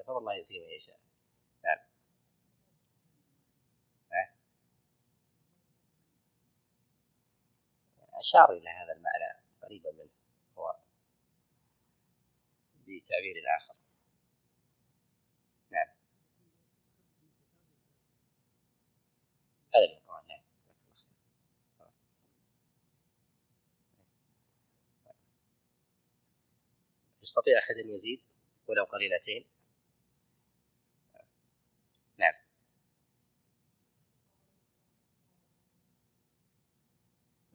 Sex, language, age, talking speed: male, Arabic, 40-59, 40 wpm